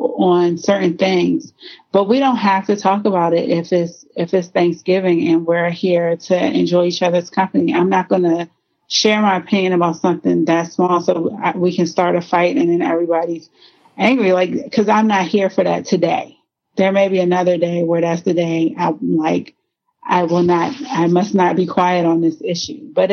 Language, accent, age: English, American, 30-49